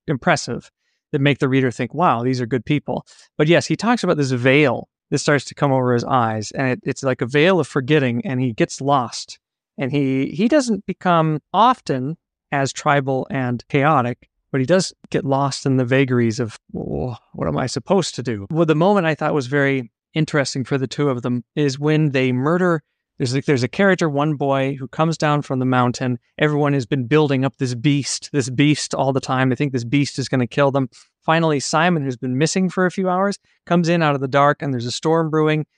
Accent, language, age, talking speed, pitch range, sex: American, English, 30-49, 220 wpm, 130-160 Hz, male